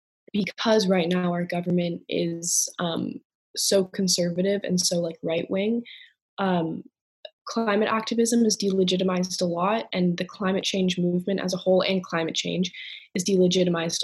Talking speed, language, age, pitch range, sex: 145 wpm, Italian, 20-39, 175-195 Hz, female